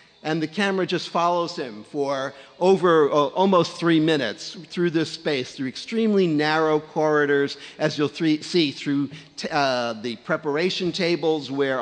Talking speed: 140 wpm